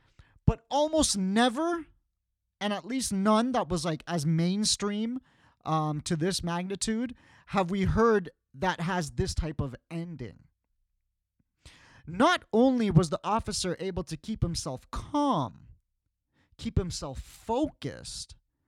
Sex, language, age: male, English, 30-49